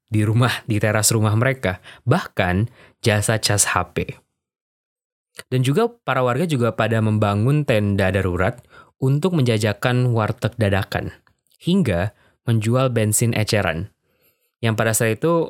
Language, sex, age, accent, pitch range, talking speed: Indonesian, male, 20-39, native, 105-125 Hz, 120 wpm